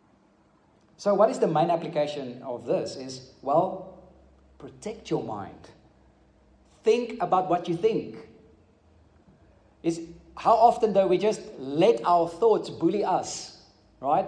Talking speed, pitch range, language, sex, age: 125 wpm, 145-220 Hz, English, male, 30-49